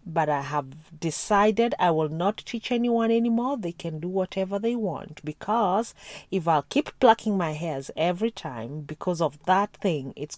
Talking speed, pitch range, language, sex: 180 wpm, 165-230 Hz, English, female